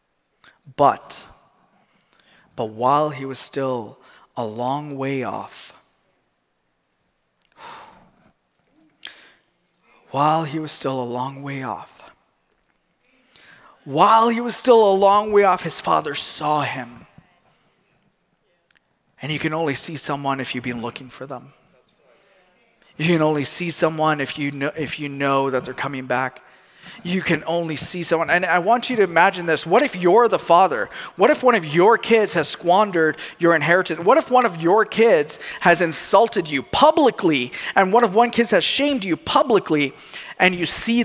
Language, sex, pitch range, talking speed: English, male, 140-180 Hz, 150 wpm